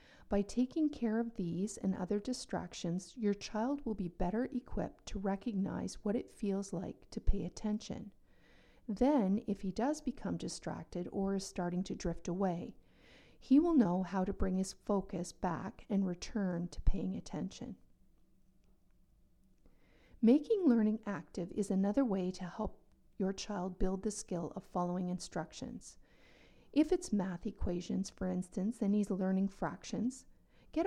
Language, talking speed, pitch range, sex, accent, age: English, 150 wpm, 185-225 Hz, female, American, 50-69